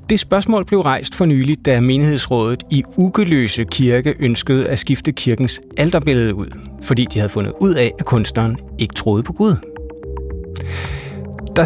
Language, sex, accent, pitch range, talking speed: Danish, male, native, 115-155 Hz, 155 wpm